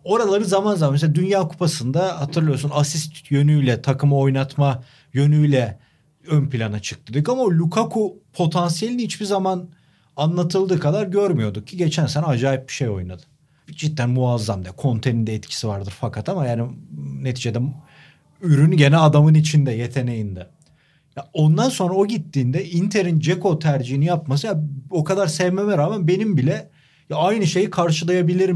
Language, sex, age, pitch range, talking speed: Turkish, male, 40-59, 140-180 Hz, 140 wpm